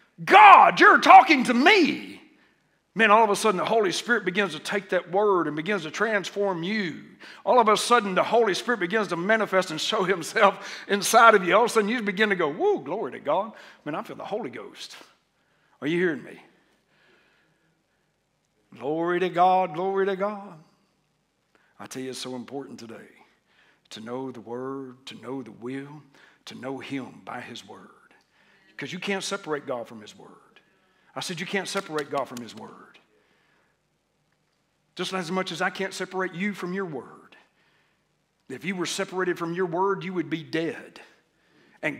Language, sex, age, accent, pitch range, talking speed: English, male, 60-79, American, 160-210 Hz, 185 wpm